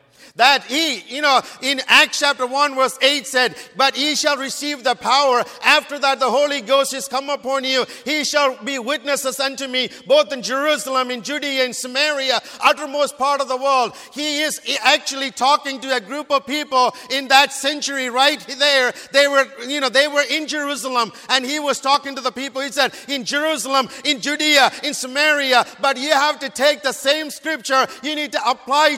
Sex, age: male, 50-69